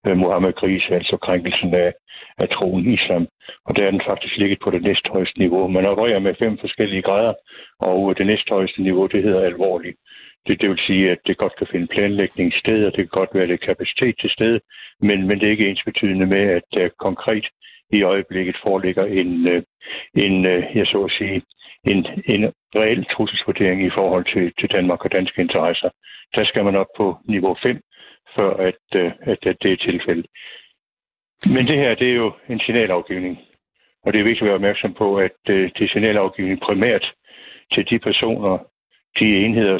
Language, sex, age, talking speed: Danish, male, 60-79, 190 wpm